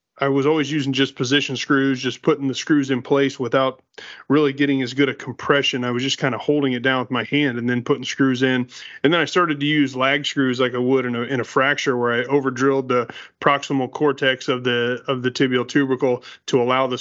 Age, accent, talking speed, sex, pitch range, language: 30-49, American, 235 wpm, male, 125-140 Hz, English